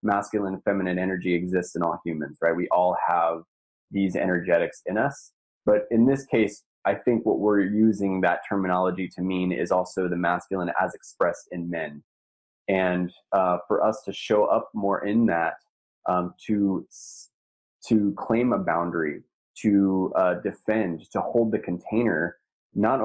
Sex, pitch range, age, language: male, 90-105 Hz, 20-39, English